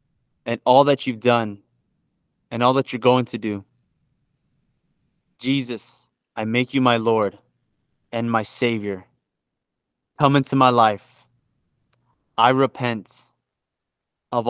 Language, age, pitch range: English, 20-39, 110-140 Hz